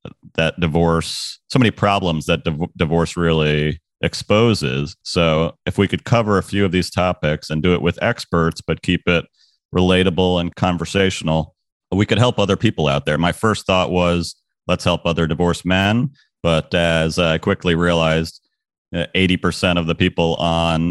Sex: male